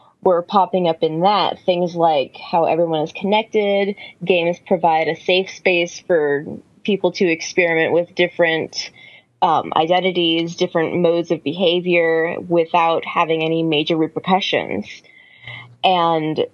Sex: female